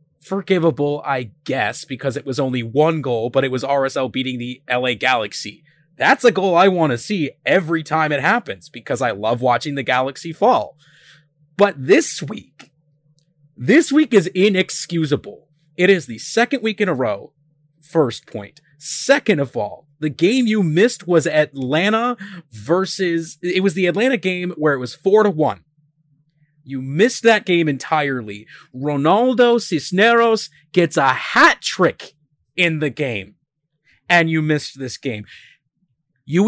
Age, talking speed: 30-49, 155 wpm